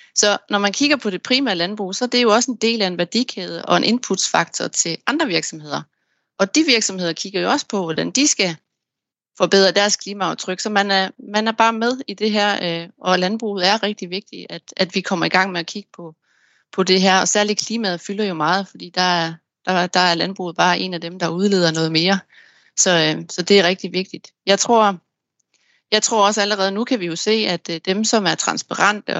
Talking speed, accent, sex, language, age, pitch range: 220 wpm, native, female, Danish, 30-49, 175-210 Hz